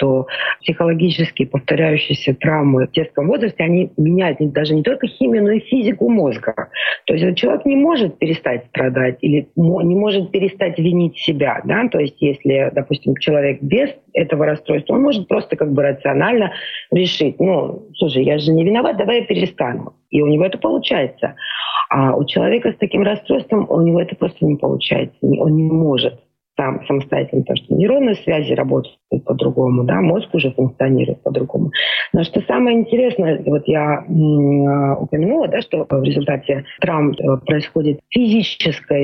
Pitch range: 140-185 Hz